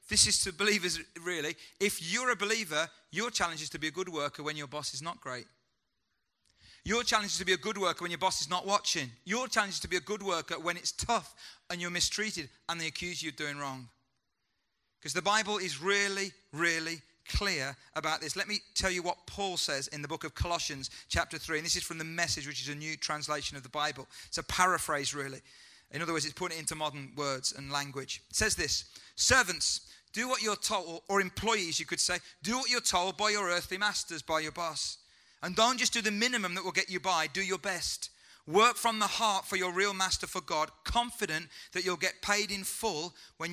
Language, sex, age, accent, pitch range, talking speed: English, male, 40-59, British, 155-200 Hz, 230 wpm